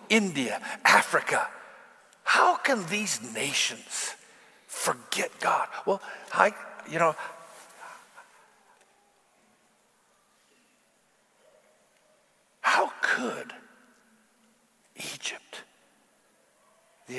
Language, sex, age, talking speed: English, male, 60-79, 55 wpm